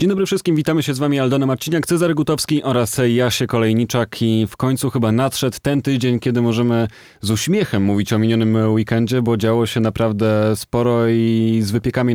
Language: Polish